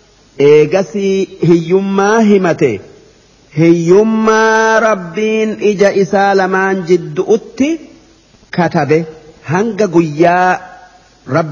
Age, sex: 50-69, male